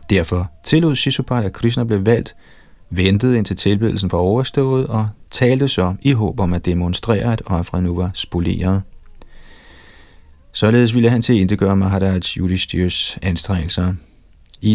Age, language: 30-49, Danish